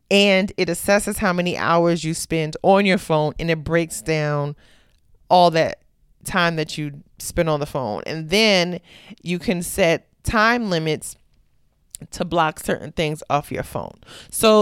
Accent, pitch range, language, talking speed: American, 155-195 Hz, English, 160 wpm